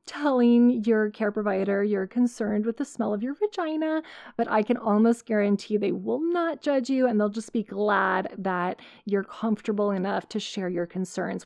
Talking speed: 185 wpm